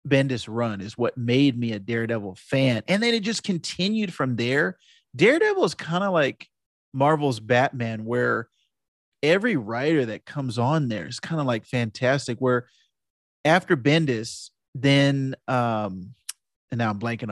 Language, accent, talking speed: English, American, 150 wpm